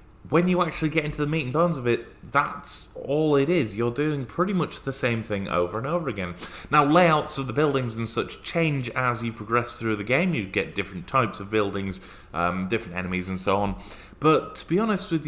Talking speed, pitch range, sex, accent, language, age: 225 wpm, 105-165 Hz, male, British, English, 20-39